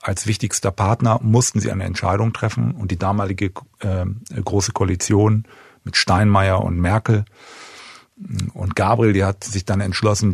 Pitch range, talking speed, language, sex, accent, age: 95-115 Hz, 145 wpm, German, male, German, 40-59